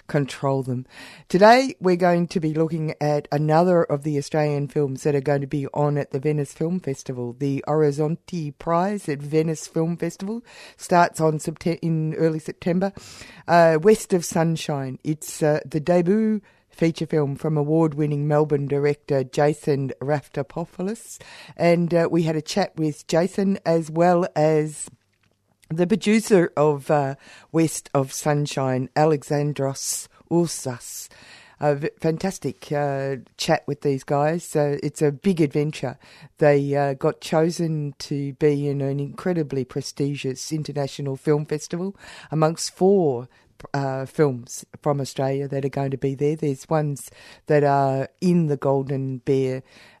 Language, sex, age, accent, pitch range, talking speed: English, female, 50-69, Australian, 140-165 Hz, 145 wpm